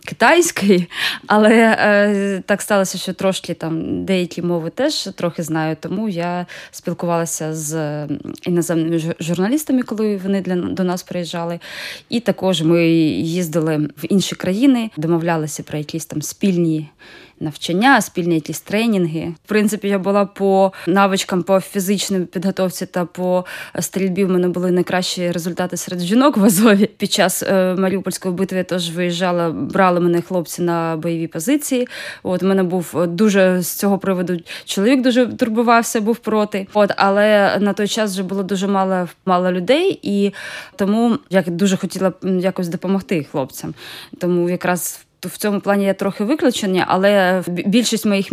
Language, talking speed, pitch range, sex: Ukrainian, 145 wpm, 175-200 Hz, female